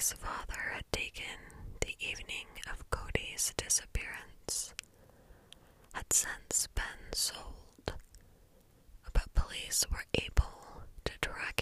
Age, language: 20-39, English